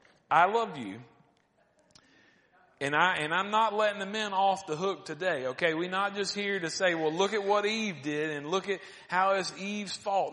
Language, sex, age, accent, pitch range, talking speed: English, male, 40-59, American, 140-185 Hz, 205 wpm